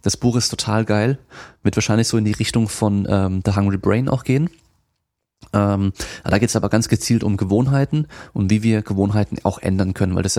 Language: German